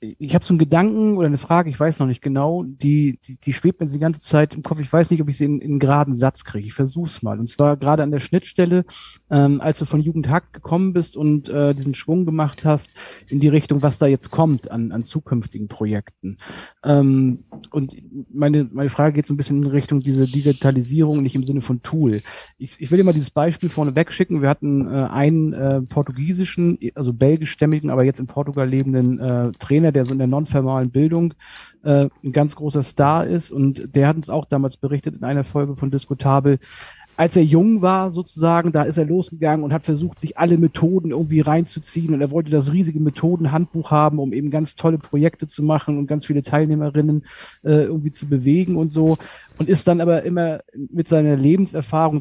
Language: German